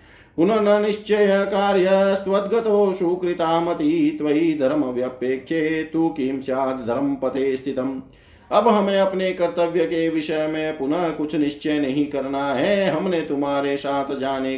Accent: native